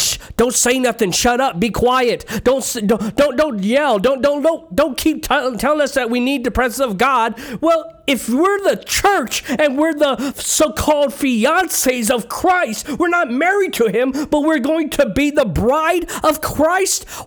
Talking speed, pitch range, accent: 180 wpm, 180-285 Hz, American